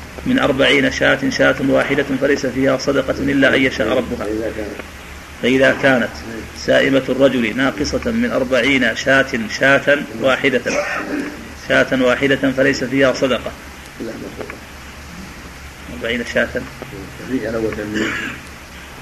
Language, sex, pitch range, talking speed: Arabic, male, 110-135 Hz, 90 wpm